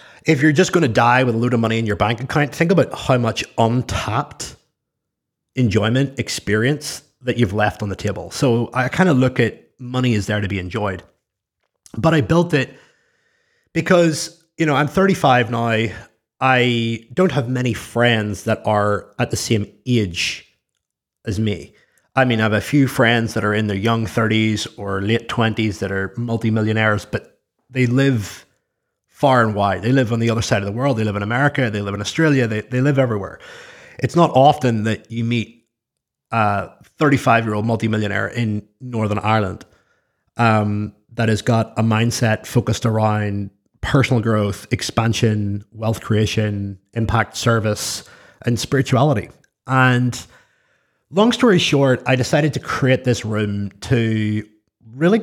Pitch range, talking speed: 105-130 Hz, 165 wpm